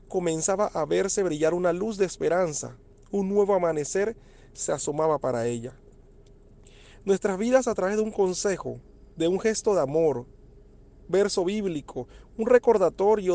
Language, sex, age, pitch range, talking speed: Spanish, male, 40-59, 135-205 Hz, 140 wpm